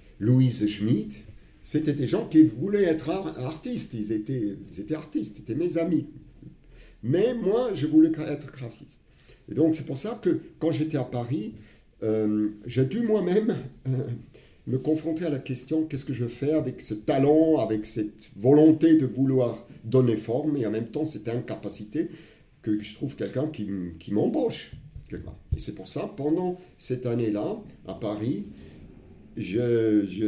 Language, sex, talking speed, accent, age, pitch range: French, male, 165 wpm, French, 50-69, 110-155 Hz